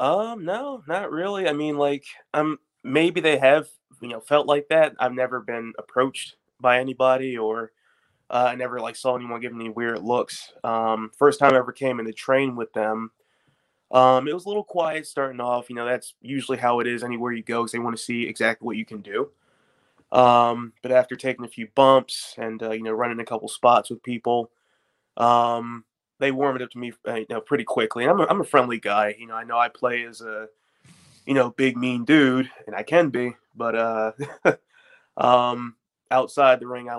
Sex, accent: male, American